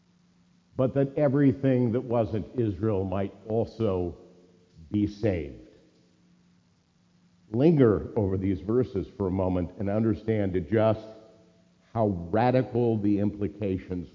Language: English